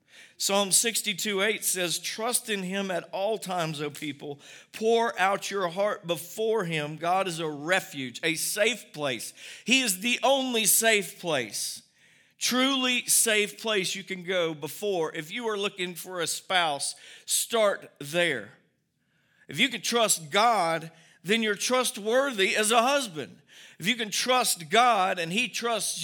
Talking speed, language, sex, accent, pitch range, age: 150 wpm, English, male, American, 180-230 Hz, 50-69